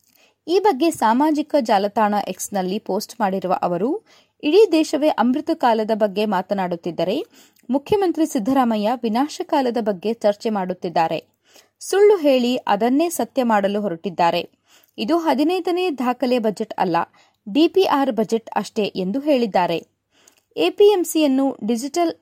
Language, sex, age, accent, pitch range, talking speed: Kannada, female, 20-39, native, 205-300 Hz, 105 wpm